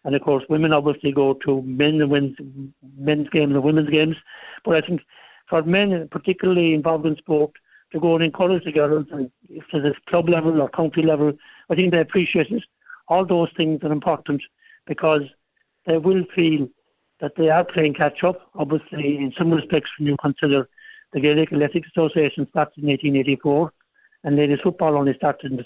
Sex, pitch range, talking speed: male, 145-170 Hz, 190 wpm